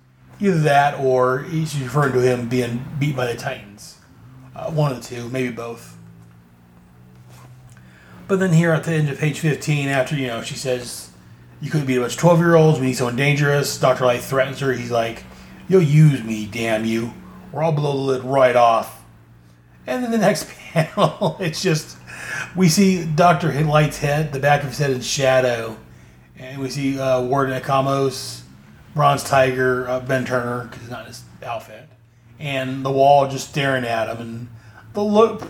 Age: 30-49